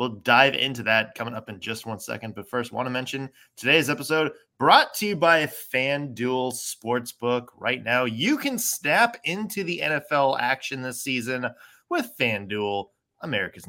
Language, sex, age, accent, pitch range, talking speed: English, male, 20-39, American, 115-185 Hz, 165 wpm